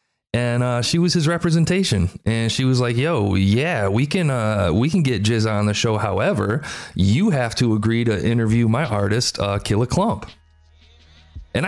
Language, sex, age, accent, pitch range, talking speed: English, male, 30-49, American, 105-165 Hz, 185 wpm